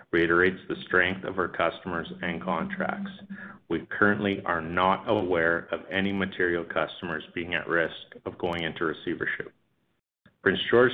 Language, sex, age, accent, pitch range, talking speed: English, male, 40-59, American, 85-100 Hz, 145 wpm